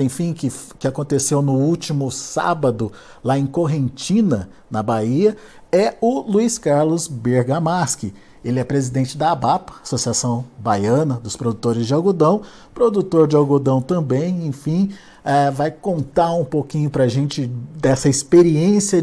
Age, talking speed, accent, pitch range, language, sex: 50-69, 130 wpm, Brazilian, 135-180 Hz, Portuguese, male